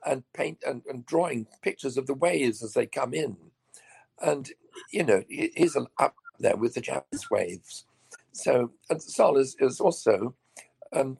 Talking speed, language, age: 165 wpm, English, 60-79